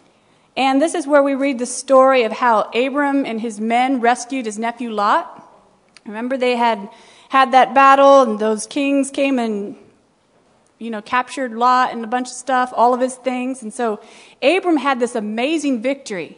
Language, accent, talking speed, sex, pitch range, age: English, American, 180 wpm, female, 225-270 Hz, 40-59